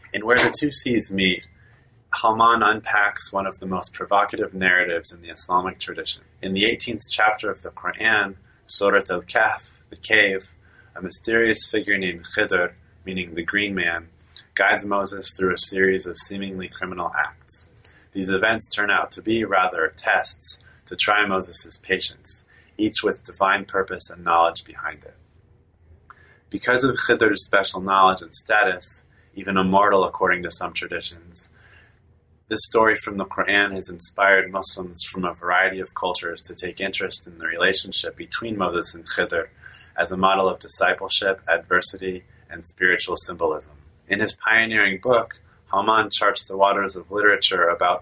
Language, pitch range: English, 90-105 Hz